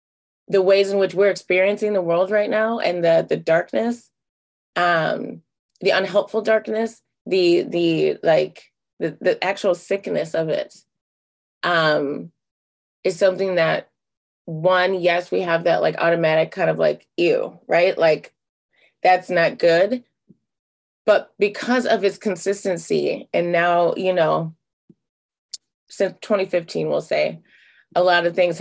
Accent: American